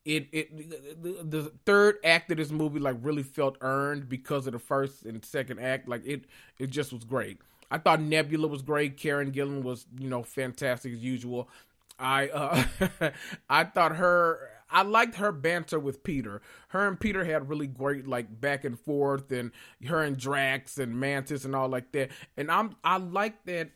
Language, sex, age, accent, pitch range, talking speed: English, male, 30-49, American, 125-155 Hz, 190 wpm